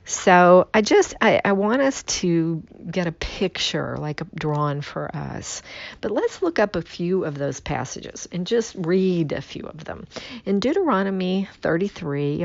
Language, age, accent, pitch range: English, 50-69, American, 155-200 Hz